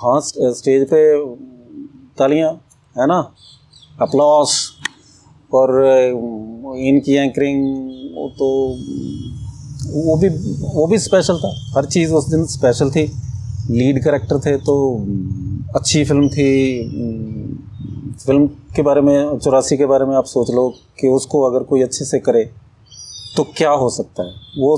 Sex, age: male, 30-49